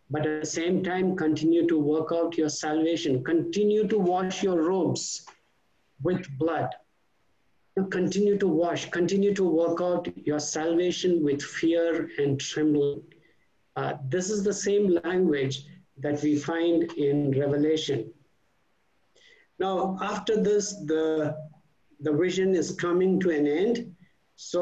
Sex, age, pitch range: male, 60-79, 145-175 Hz